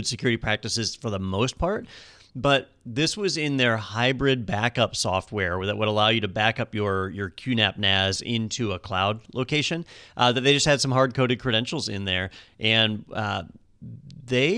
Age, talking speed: 30-49, 175 wpm